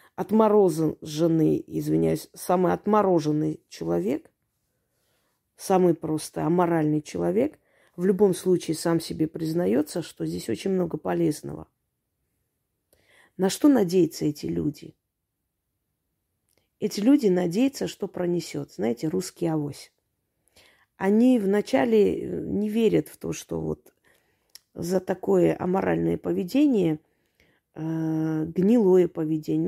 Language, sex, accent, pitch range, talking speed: Russian, female, native, 155-200 Hz, 95 wpm